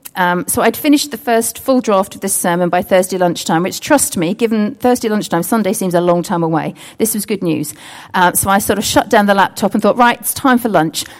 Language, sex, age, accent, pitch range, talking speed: English, female, 40-59, British, 175-245 Hz, 245 wpm